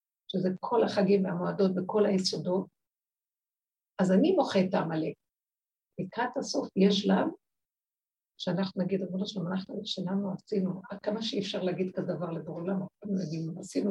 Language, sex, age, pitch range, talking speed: Hebrew, female, 60-79, 185-210 Hz, 130 wpm